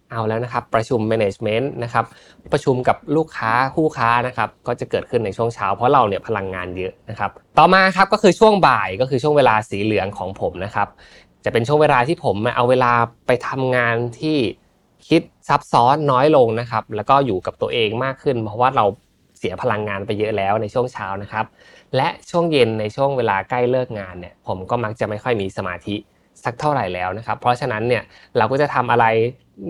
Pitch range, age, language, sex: 110-135 Hz, 20-39, Thai, male